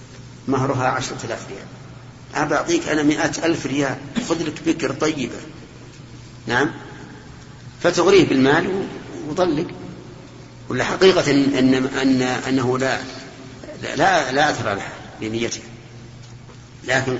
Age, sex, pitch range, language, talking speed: 50-69, male, 125-145 Hz, Arabic, 105 wpm